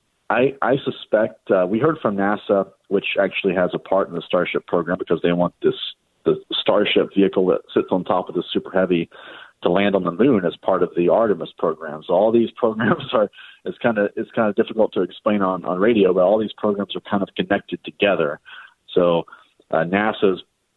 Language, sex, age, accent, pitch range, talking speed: English, male, 40-59, American, 90-105 Hz, 200 wpm